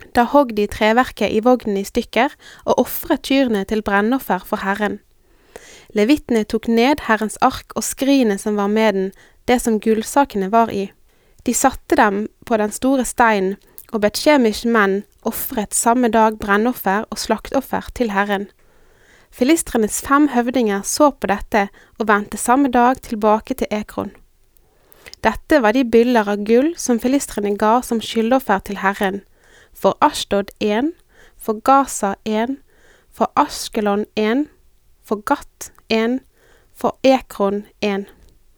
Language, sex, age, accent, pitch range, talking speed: Danish, female, 20-39, Swedish, 210-260 Hz, 140 wpm